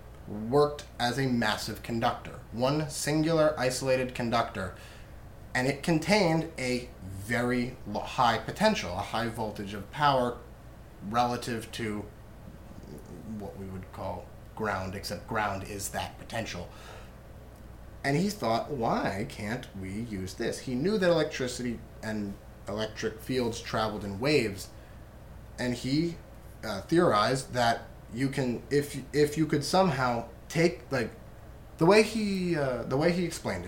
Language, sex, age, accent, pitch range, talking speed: English, male, 30-49, American, 110-150 Hz, 130 wpm